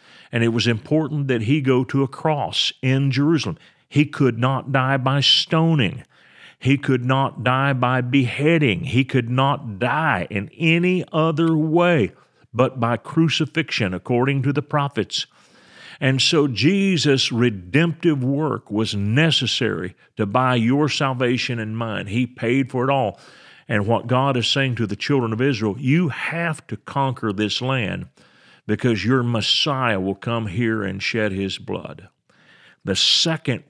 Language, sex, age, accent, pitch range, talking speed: English, male, 50-69, American, 115-145 Hz, 150 wpm